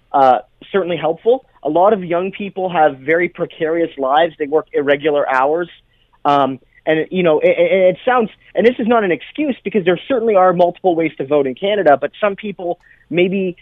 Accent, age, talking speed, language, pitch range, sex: American, 30-49, 190 wpm, English, 155-195 Hz, male